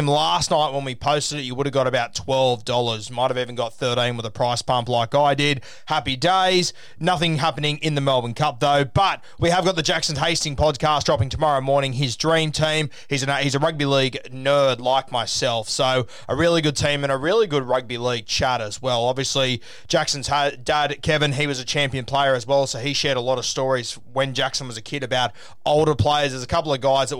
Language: English